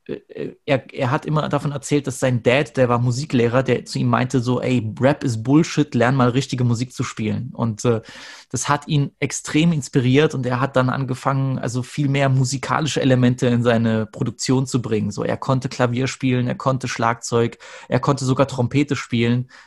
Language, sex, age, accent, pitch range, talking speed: German, male, 30-49, German, 120-140 Hz, 190 wpm